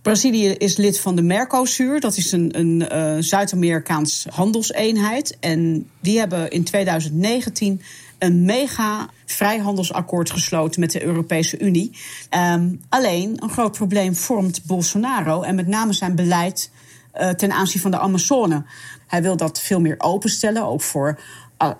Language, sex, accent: Dutch, female, Dutch